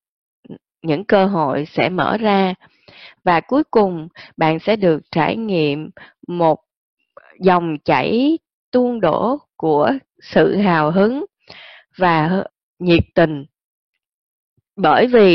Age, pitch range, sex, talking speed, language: 20-39, 160-215 Hz, female, 110 wpm, Vietnamese